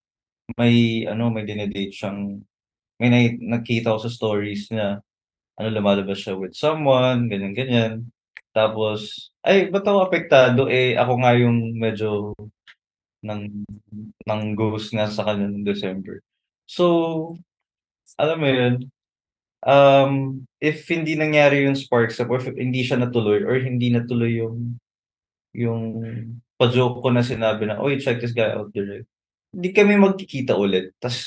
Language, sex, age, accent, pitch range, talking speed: Filipino, male, 20-39, native, 105-130 Hz, 130 wpm